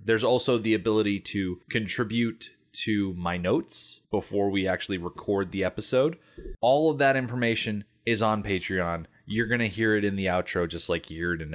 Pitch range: 95-115 Hz